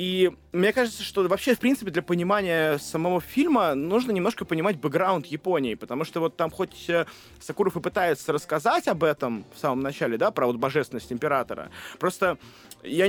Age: 20-39